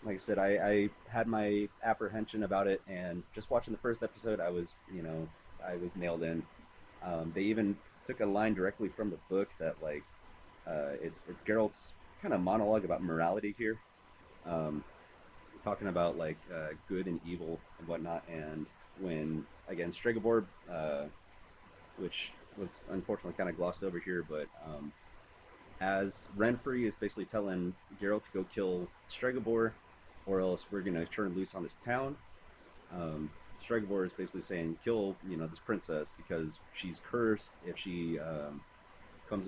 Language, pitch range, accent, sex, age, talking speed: English, 85-100 Hz, American, male, 30-49, 165 wpm